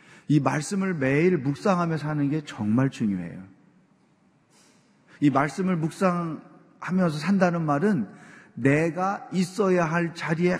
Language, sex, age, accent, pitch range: Korean, male, 40-59, native, 140-185 Hz